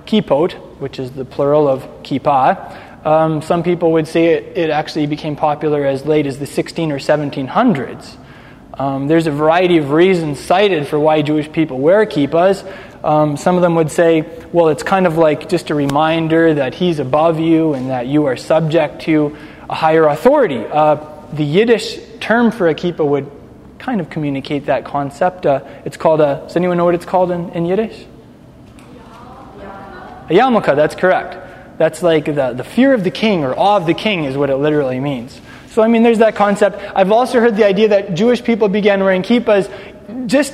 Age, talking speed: 20-39, 190 wpm